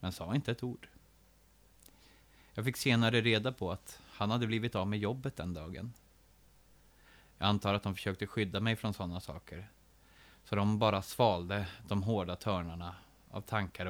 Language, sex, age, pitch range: Swedish, male, 30-49, 90-115 Hz